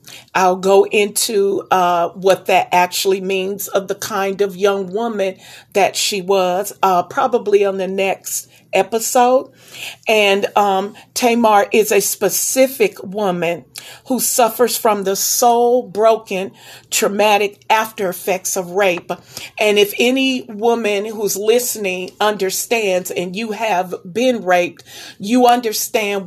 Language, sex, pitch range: English, female, 185-235 Hz